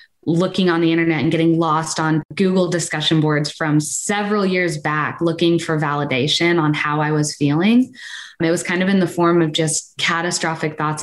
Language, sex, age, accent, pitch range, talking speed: English, female, 20-39, American, 150-170 Hz, 185 wpm